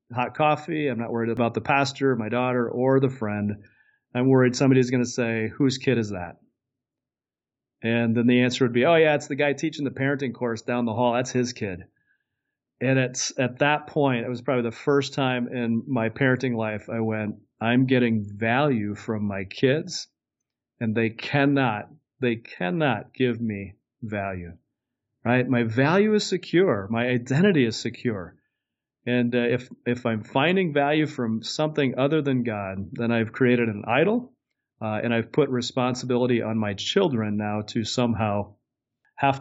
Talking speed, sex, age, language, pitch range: 170 wpm, male, 40-59, English, 115-140 Hz